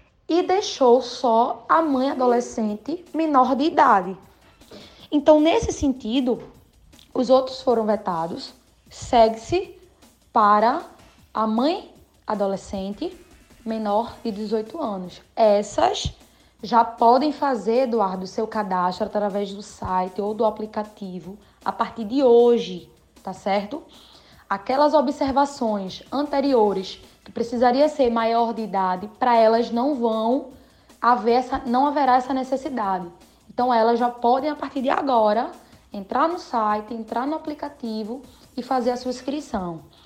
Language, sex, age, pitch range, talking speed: Portuguese, female, 10-29, 215-280 Hz, 125 wpm